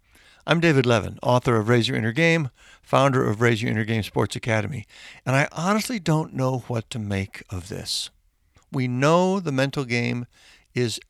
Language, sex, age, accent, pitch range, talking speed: English, male, 60-79, American, 120-165 Hz, 170 wpm